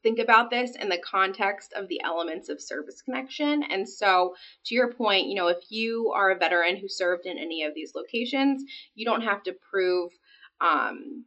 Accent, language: American, English